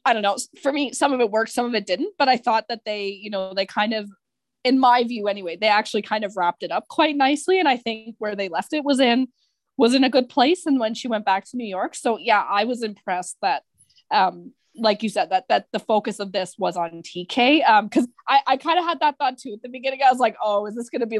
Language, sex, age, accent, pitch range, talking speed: English, female, 20-39, American, 210-280 Hz, 280 wpm